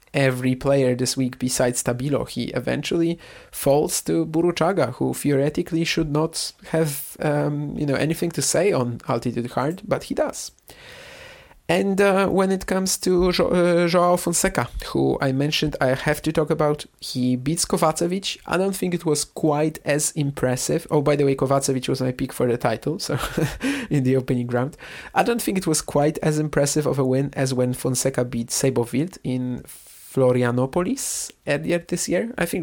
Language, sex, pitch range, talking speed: English, male, 125-160 Hz, 175 wpm